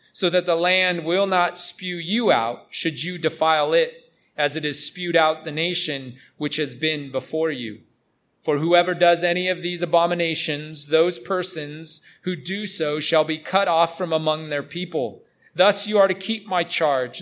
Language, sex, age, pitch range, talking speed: English, male, 30-49, 150-180 Hz, 180 wpm